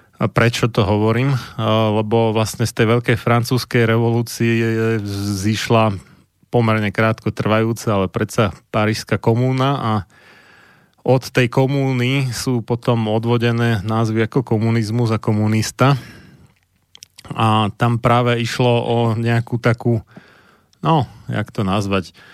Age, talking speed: 30-49, 115 wpm